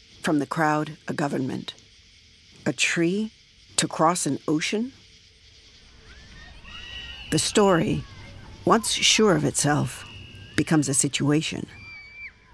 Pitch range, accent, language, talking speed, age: 120-165 Hz, American, English, 95 wpm, 50-69